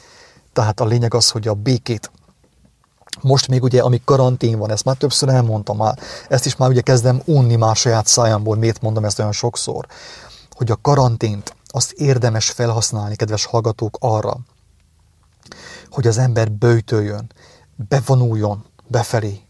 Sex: male